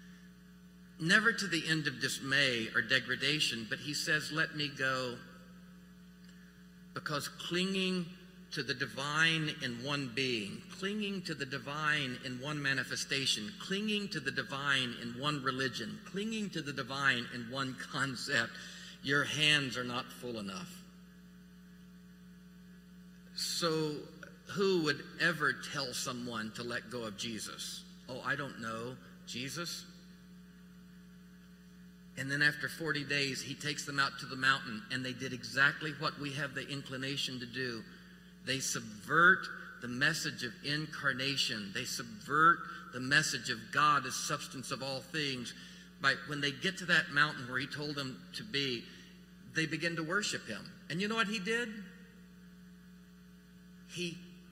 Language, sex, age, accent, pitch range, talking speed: English, male, 50-69, American, 135-185 Hz, 145 wpm